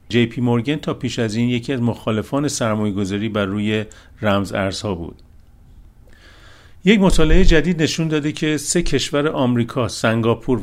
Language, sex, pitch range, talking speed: Persian, male, 100-125 Hz, 145 wpm